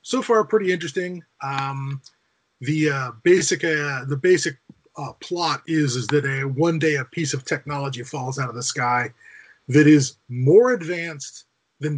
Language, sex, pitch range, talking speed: English, male, 125-155 Hz, 175 wpm